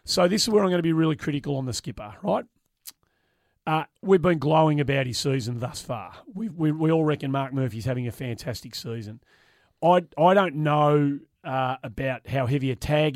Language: English